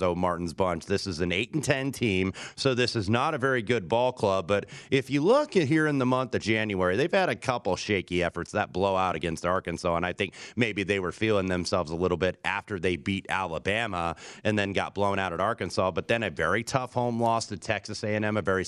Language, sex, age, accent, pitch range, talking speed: English, male, 30-49, American, 95-120 Hz, 245 wpm